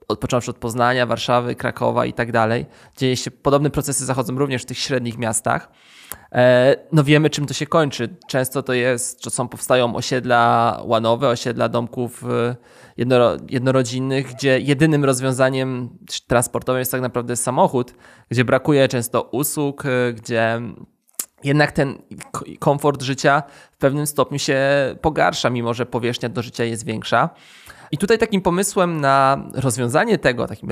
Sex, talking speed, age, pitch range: male, 140 wpm, 20-39, 120-140 Hz